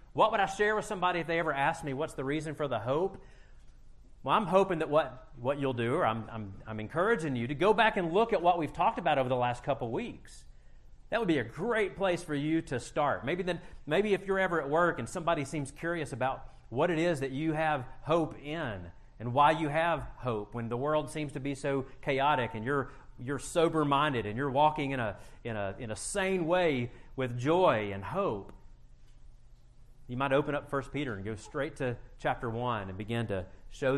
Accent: American